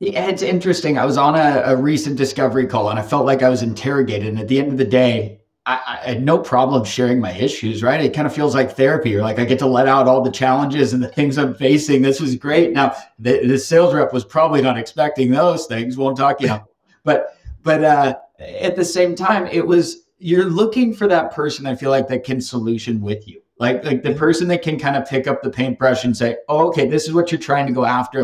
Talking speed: 245 wpm